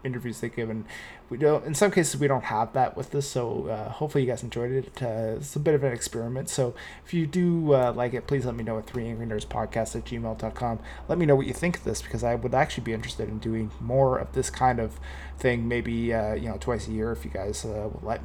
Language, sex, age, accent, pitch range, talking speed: English, male, 20-39, American, 120-135 Hz, 260 wpm